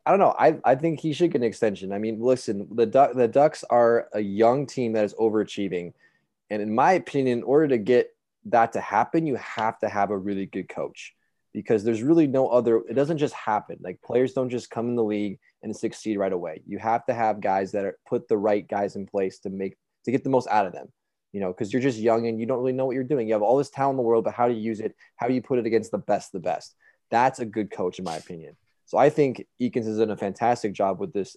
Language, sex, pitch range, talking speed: English, male, 100-125 Hz, 275 wpm